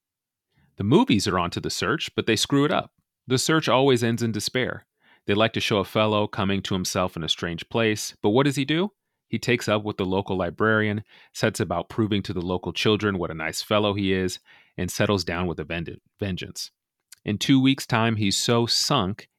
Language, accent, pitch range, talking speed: English, American, 95-120 Hz, 215 wpm